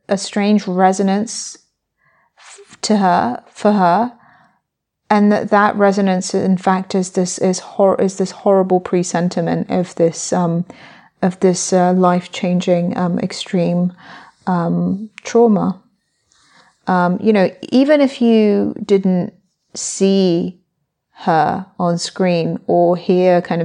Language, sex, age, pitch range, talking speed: English, female, 30-49, 180-200 Hz, 120 wpm